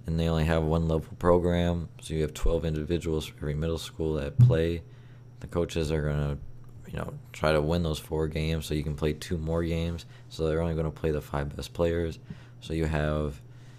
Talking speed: 220 wpm